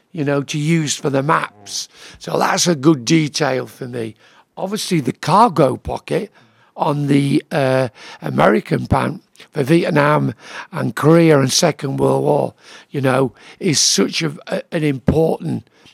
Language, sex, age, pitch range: Japanese, male, 60-79, 140-175 Hz